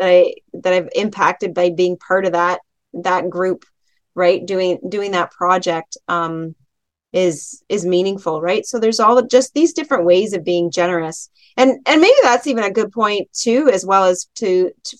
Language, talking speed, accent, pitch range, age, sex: English, 185 wpm, American, 180-235 Hz, 30-49, female